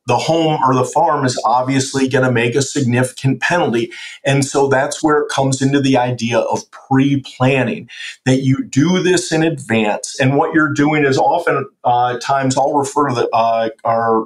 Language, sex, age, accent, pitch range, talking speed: English, male, 40-59, American, 125-145 Hz, 180 wpm